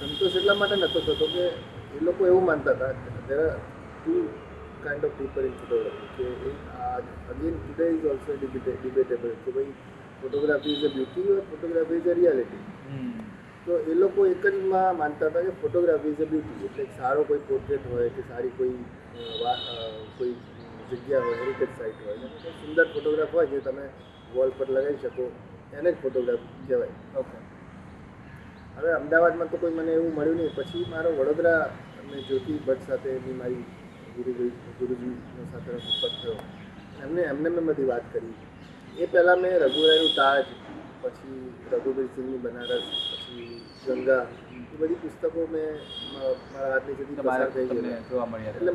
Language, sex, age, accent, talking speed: Gujarati, male, 30-49, native, 140 wpm